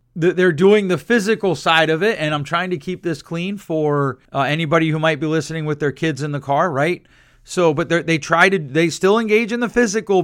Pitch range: 140-180 Hz